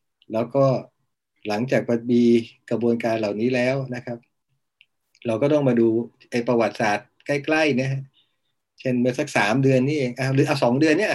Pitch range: 115-135 Hz